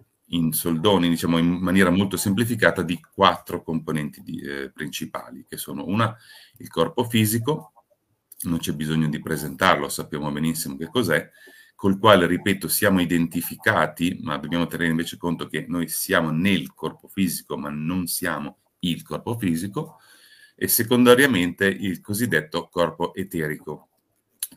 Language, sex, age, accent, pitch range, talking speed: Italian, male, 40-59, native, 80-105 Hz, 135 wpm